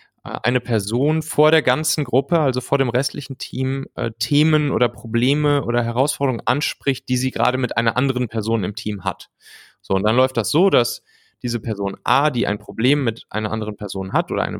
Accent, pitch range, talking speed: German, 105-135 Hz, 195 wpm